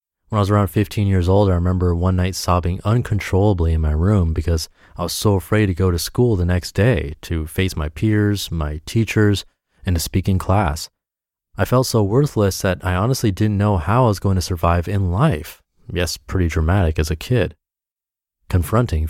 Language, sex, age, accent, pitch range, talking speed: English, male, 30-49, American, 85-110 Hz, 200 wpm